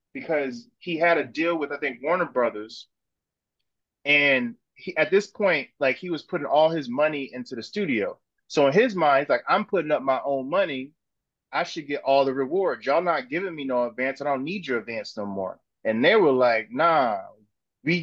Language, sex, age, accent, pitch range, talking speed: English, male, 20-39, American, 130-165 Hz, 200 wpm